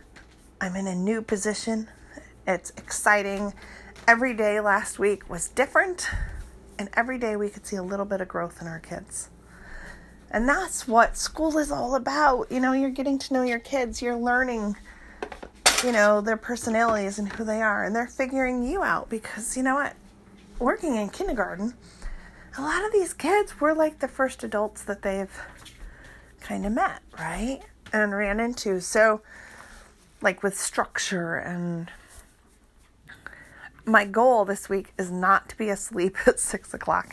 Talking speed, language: 160 wpm, English